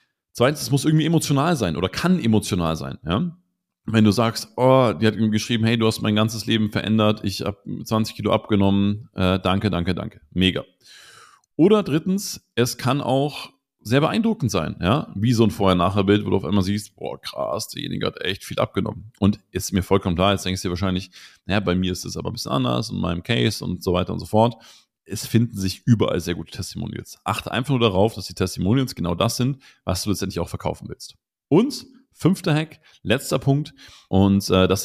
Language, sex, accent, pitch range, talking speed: German, male, German, 85-115 Hz, 205 wpm